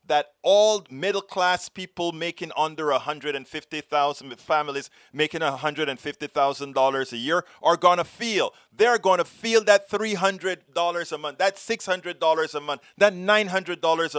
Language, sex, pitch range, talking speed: English, male, 155-210 Hz, 135 wpm